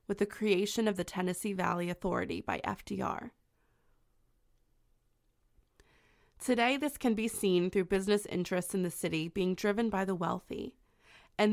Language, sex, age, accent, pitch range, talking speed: English, female, 20-39, American, 180-220 Hz, 140 wpm